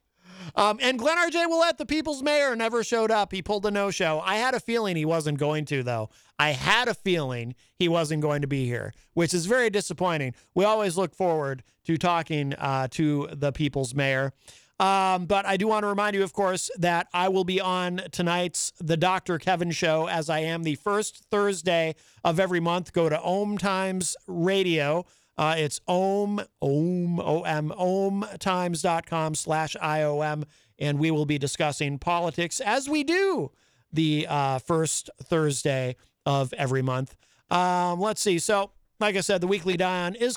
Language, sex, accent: English, male, American